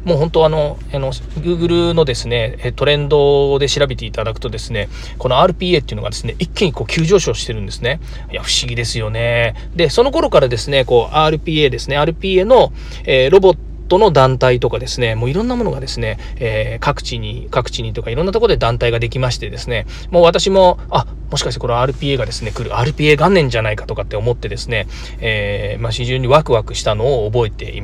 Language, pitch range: Japanese, 115-175 Hz